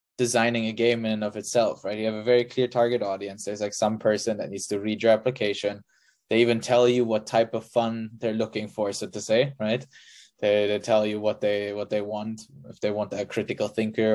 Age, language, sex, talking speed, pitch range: 20-39, English, male, 235 wpm, 105-115 Hz